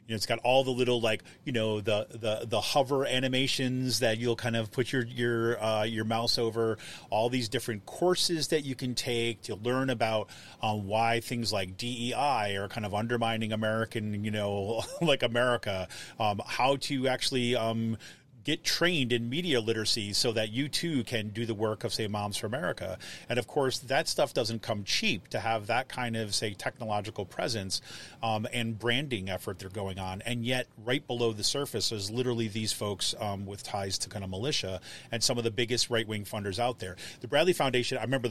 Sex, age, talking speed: male, 30-49, 195 wpm